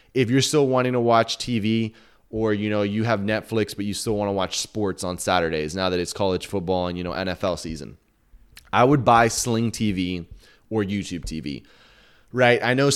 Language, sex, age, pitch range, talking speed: English, male, 20-39, 110-130 Hz, 200 wpm